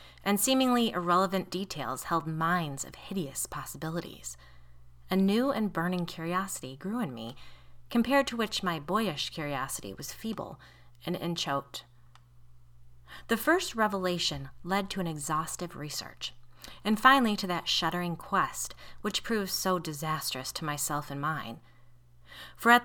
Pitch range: 135-185 Hz